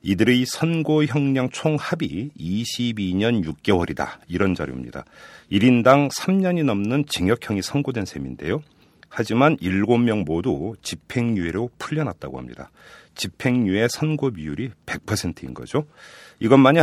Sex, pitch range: male, 90-135 Hz